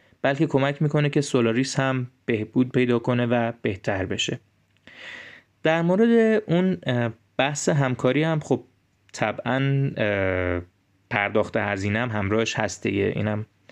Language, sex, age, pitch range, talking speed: Persian, male, 20-39, 115-150 Hz, 120 wpm